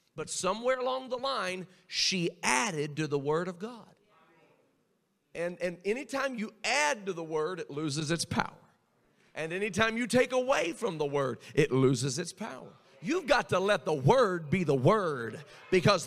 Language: English